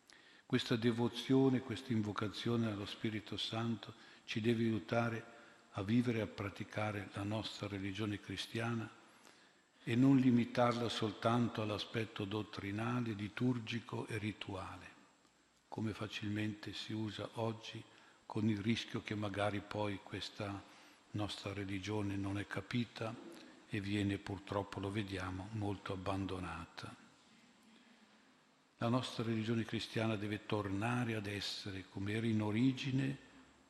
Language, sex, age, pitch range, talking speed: Italian, male, 50-69, 100-115 Hz, 115 wpm